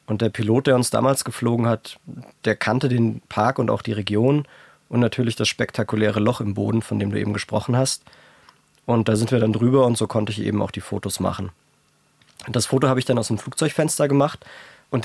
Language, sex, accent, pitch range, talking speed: German, male, German, 105-130 Hz, 215 wpm